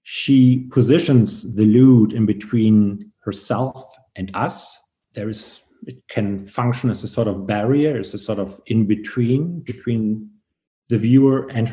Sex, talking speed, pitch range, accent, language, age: male, 145 wpm, 105-130 Hz, German, English, 50-69